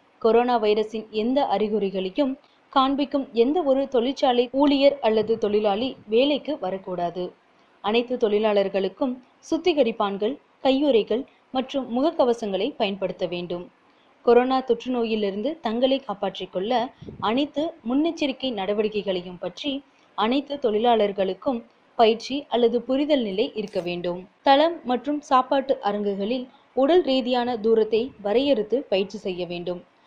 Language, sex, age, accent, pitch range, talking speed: Tamil, female, 20-39, native, 205-270 Hz, 100 wpm